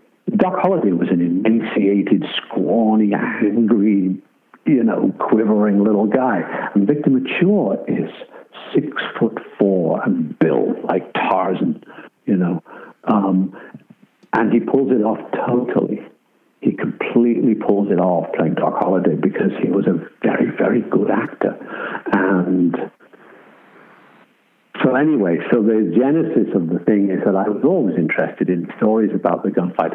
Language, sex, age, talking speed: English, male, 70-89, 135 wpm